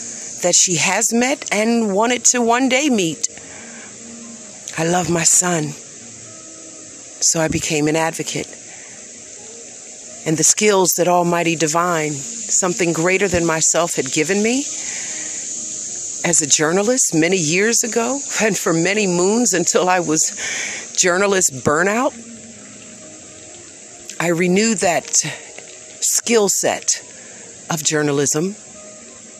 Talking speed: 110 wpm